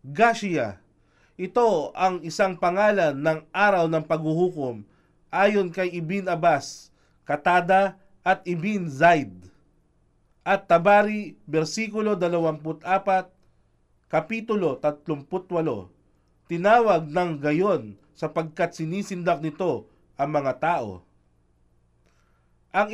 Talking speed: 85 wpm